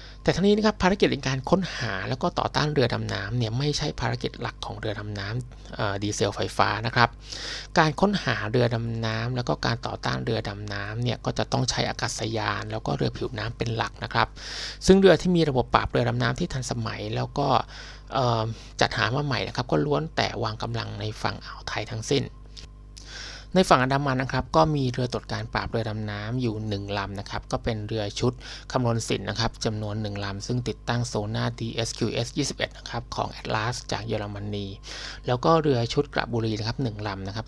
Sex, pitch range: male, 110-130 Hz